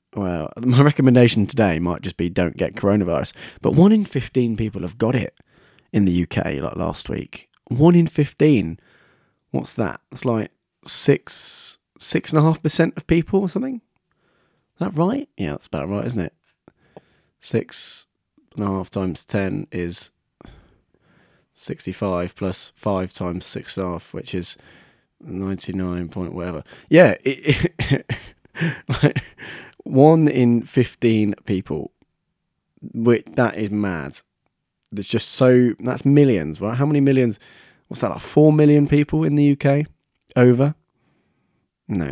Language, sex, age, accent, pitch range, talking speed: English, male, 20-39, British, 95-145 Hz, 130 wpm